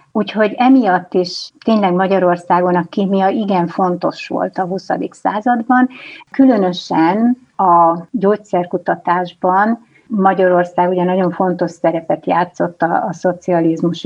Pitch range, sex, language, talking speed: 175-200 Hz, female, Hungarian, 105 wpm